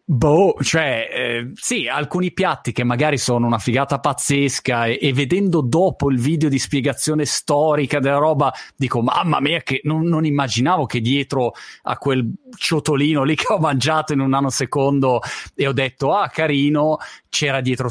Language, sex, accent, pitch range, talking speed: Italian, male, native, 120-150 Hz, 165 wpm